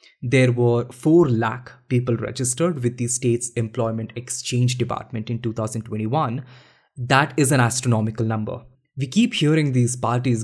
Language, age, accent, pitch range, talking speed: English, 20-39, Indian, 120-150 Hz, 140 wpm